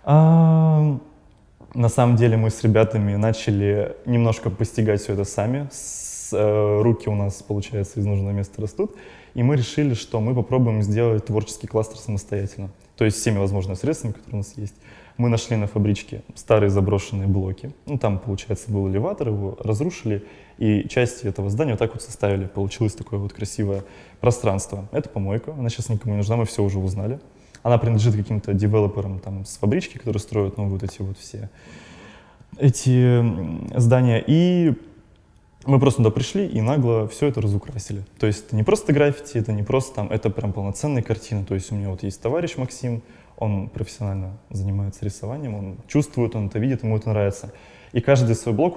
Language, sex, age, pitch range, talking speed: Russian, male, 20-39, 100-120 Hz, 175 wpm